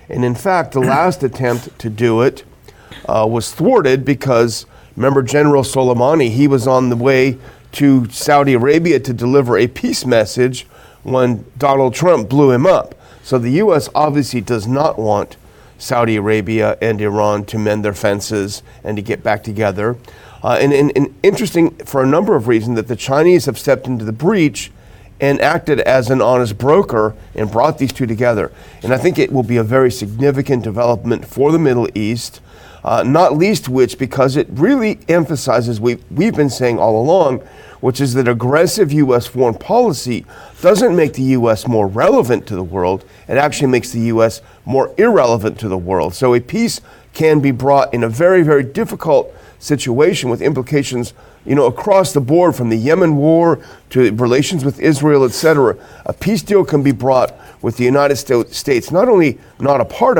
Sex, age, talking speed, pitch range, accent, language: male, 40-59, 180 wpm, 115-145 Hz, American, English